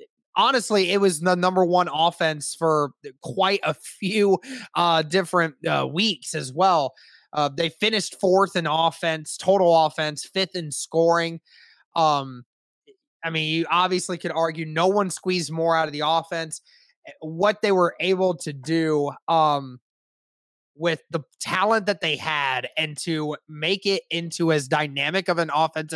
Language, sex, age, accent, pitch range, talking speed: English, male, 20-39, American, 155-185 Hz, 155 wpm